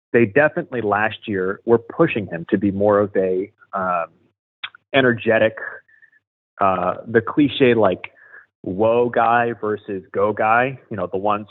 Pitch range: 100-130 Hz